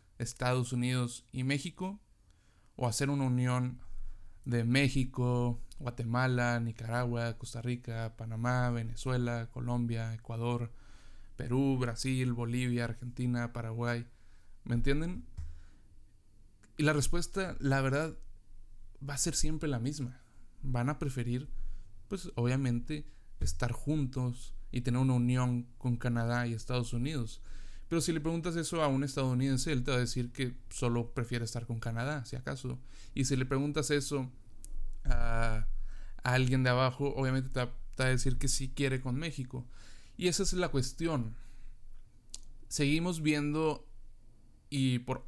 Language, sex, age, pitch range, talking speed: Spanish, male, 20-39, 115-135 Hz, 135 wpm